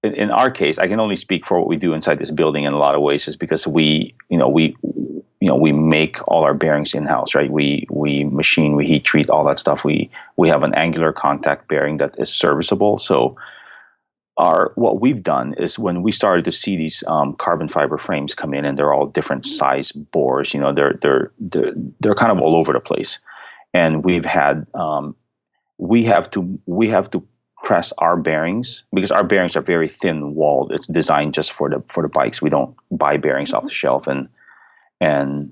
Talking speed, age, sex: 215 wpm, 30-49, male